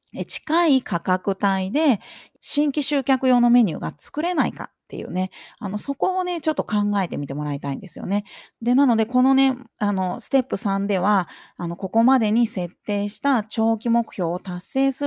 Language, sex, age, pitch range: Japanese, female, 30-49, 185-270 Hz